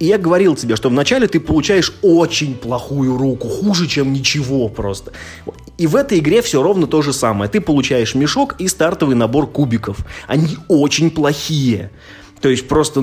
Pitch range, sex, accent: 115-155 Hz, male, native